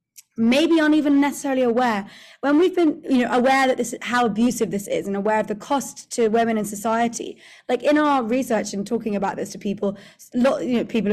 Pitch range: 205-255 Hz